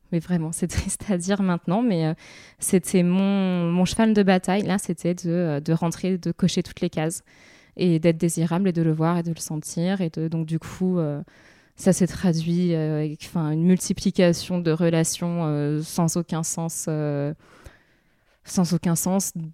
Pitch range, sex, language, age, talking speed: 165-190 Hz, female, French, 20-39, 180 wpm